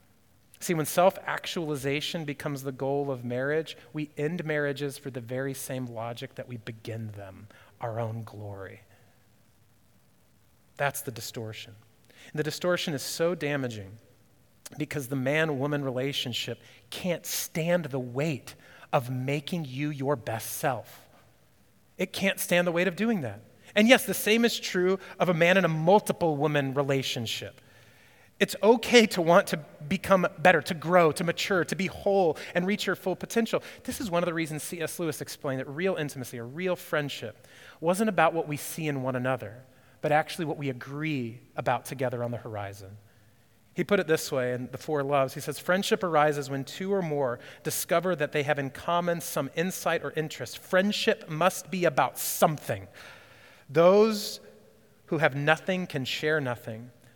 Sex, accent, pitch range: male, American, 125-175 Hz